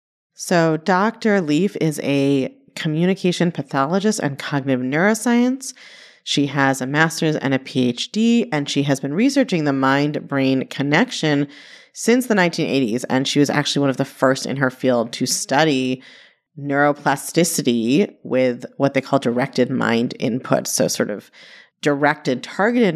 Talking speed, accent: 140 wpm, American